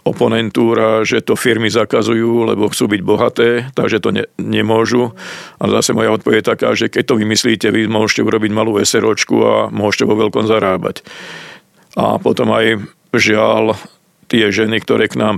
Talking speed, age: 165 wpm, 50-69